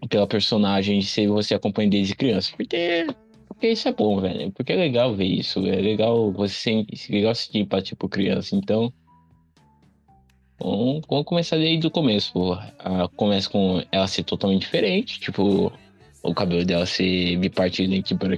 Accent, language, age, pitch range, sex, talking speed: Brazilian, English, 20-39, 95-110 Hz, male, 165 wpm